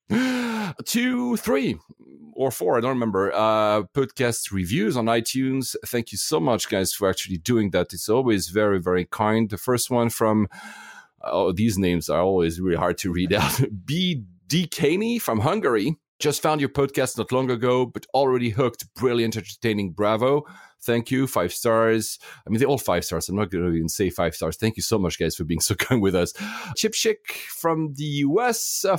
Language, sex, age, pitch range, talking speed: English, male, 40-59, 105-140 Hz, 190 wpm